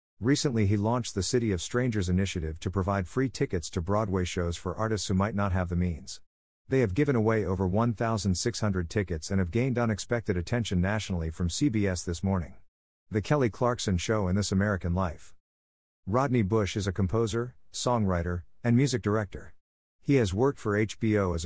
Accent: American